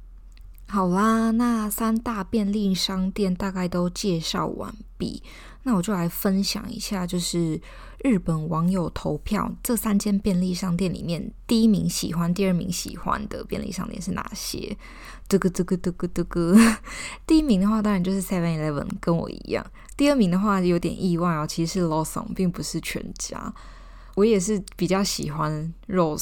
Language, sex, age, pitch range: Chinese, female, 20-39, 175-215 Hz